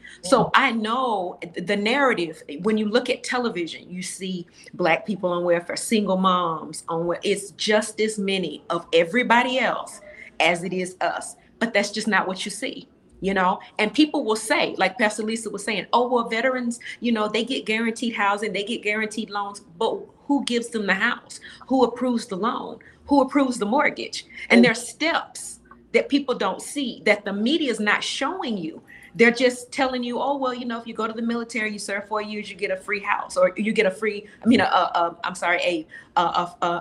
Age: 40-59